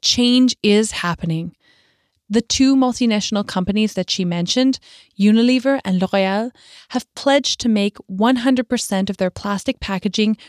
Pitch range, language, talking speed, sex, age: 200-250 Hz, English, 125 wpm, female, 20-39